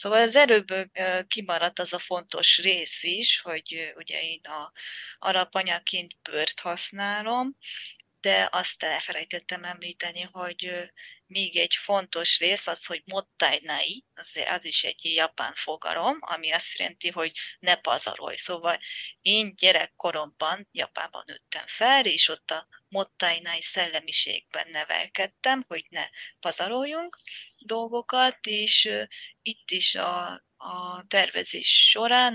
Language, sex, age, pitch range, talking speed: Hungarian, female, 20-39, 175-215 Hz, 120 wpm